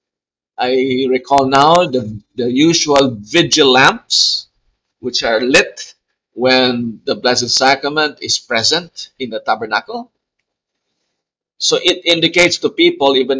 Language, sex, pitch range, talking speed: English, male, 130-180 Hz, 115 wpm